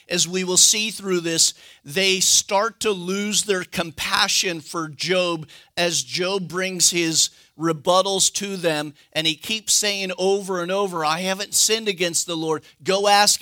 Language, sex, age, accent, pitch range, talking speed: English, male, 50-69, American, 150-195 Hz, 160 wpm